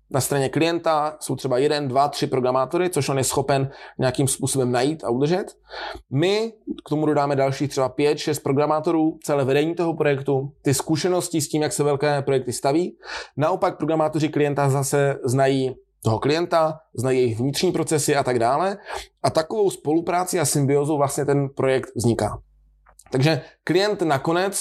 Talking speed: 160 wpm